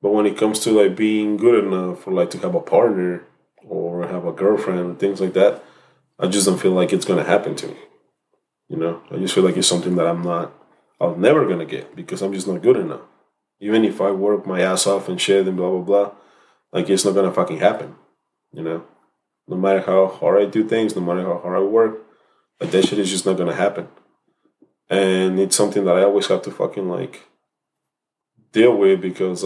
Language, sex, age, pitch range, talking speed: English, male, 20-39, 90-105 Hz, 230 wpm